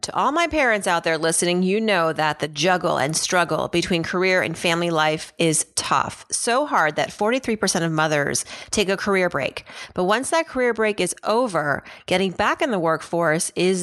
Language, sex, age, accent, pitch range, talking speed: English, female, 30-49, American, 165-210 Hz, 190 wpm